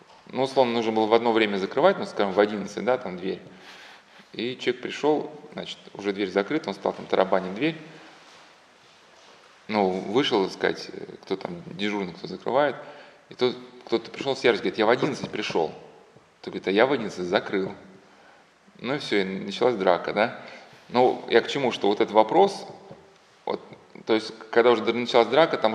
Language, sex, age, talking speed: Russian, male, 20-39, 175 wpm